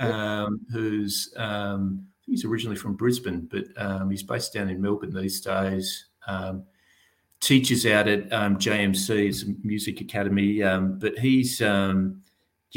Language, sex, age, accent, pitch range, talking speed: English, male, 40-59, Australian, 95-115 Hz, 145 wpm